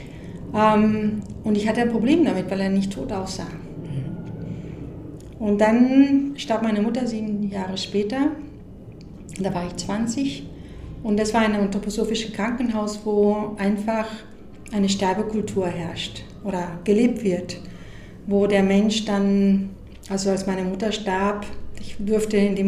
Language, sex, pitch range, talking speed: German, female, 195-220 Hz, 130 wpm